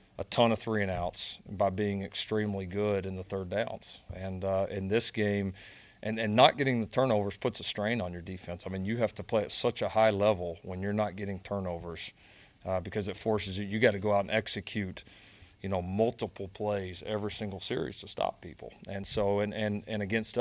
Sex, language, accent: male, English, American